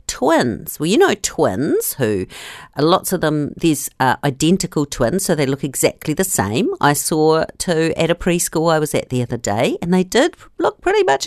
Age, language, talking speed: 50-69, English, 190 wpm